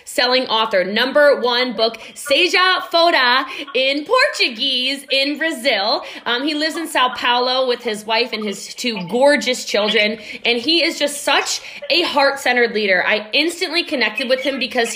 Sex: female